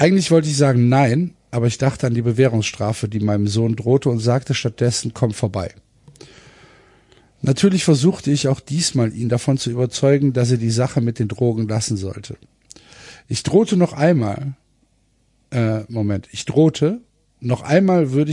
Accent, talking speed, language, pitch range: German, 160 wpm, German, 115-140 Hz